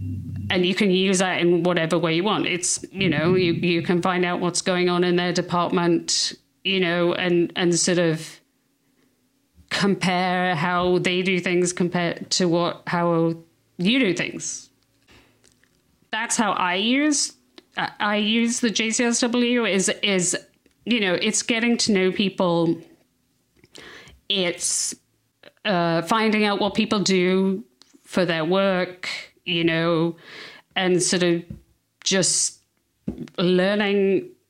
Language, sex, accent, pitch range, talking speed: English, female, British, 170-195 Hz, 130 wpm